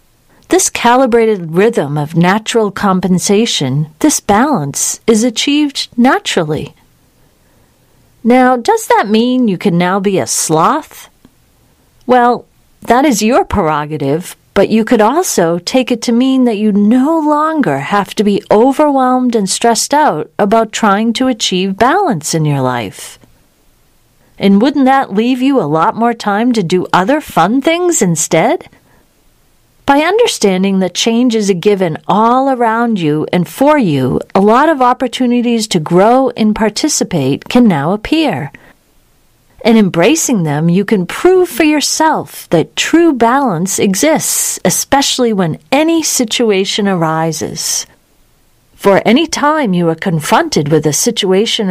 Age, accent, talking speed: 40-59, American, 135 wpm